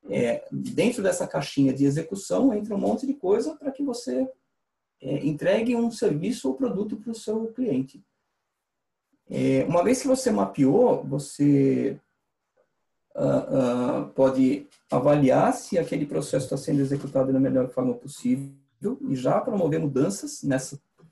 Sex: male